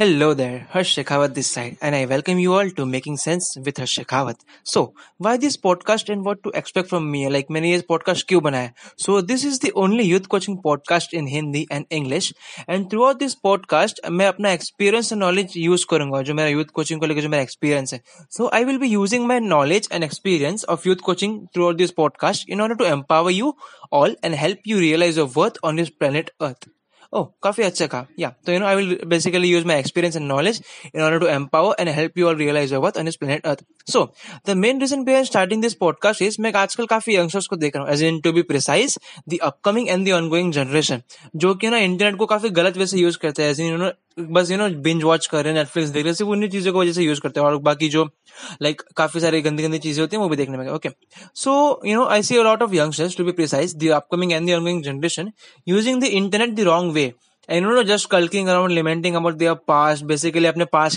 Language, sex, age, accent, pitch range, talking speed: English, male, 20-39, Indian, 155-195 Hz, 200 wpm